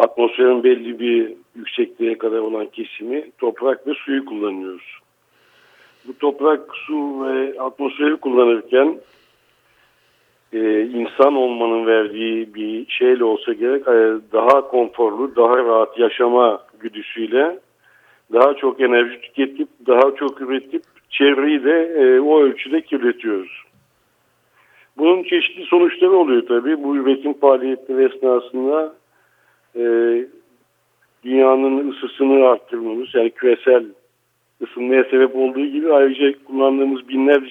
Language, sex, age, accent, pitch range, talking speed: Turkish, male, 60-79, native, 120-150 Hz, 100 wpm